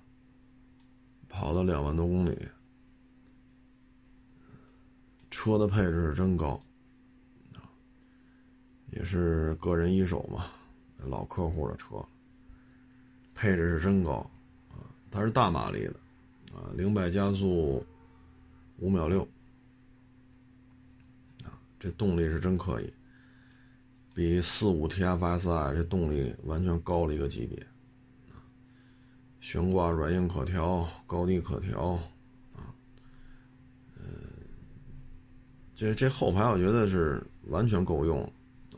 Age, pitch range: 50-69, 85-130 Hz